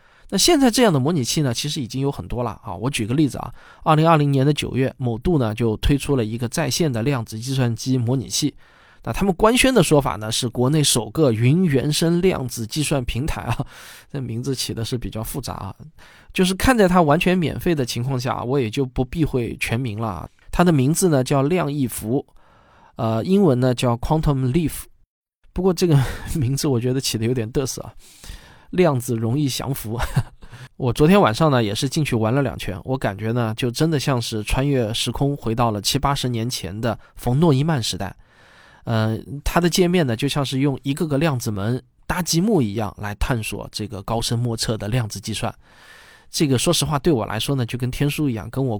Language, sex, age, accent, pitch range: Chinese, male, 20-39, native, 115-150 Hz